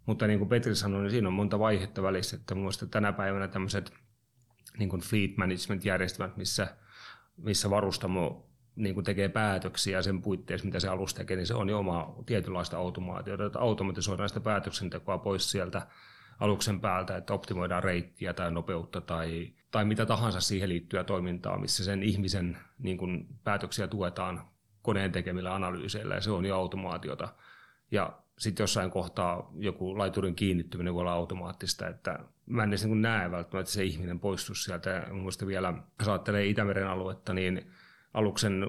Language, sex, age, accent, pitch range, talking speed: Finnish, male, 30-49, native, 90-105 Hz, 155 wpm